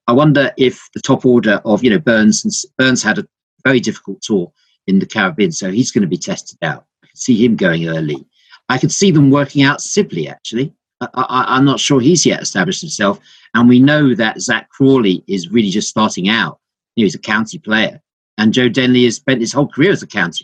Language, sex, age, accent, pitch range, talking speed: English, male, 50-69, British, 110-155 Hz, 225 wpm